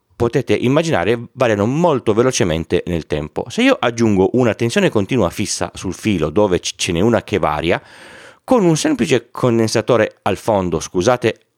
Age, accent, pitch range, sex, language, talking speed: 30-49, native, 95-125 Hz, male, Italian, 150 wpm